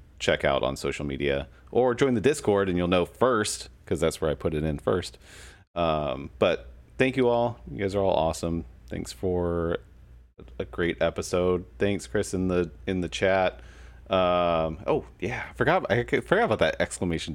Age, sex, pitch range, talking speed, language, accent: 30-49, male, 80-105 Hz, 180 wpm, English, American